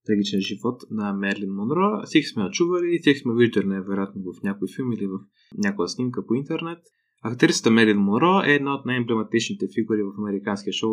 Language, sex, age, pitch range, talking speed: Bulgarian, male, 20-39, 105-145 Hz, 180 wpm